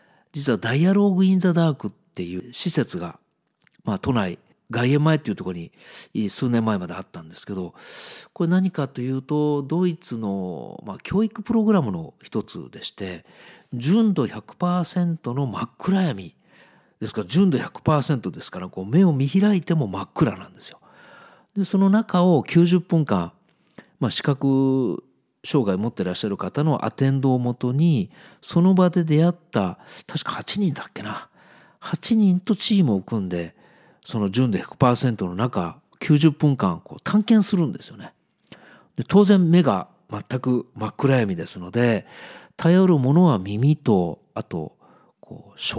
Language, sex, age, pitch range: Japanese, male, 50-69, 120-180 Hz